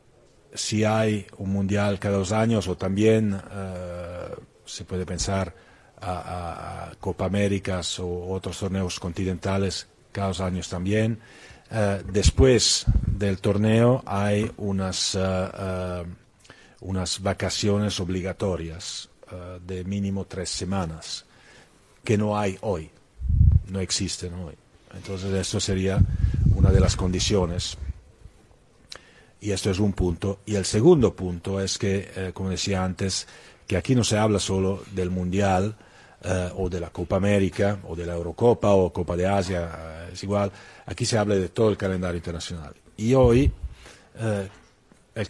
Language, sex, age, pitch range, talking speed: Spanish, male, 40-59, 90-105 Hz, 135 wpm